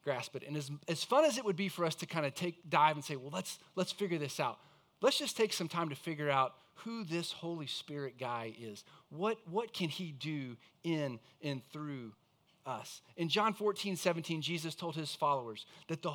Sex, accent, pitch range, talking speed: male, American, 140-180 Hz, 215 wpm